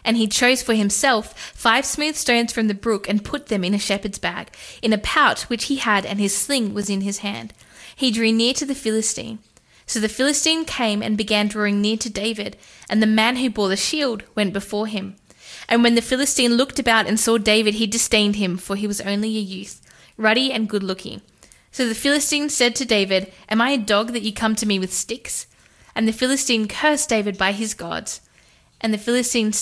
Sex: female